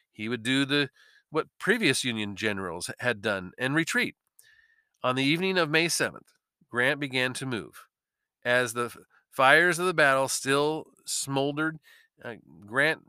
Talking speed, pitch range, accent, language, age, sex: 140 wpm, 125-170 Hz, American, English, 40-59, male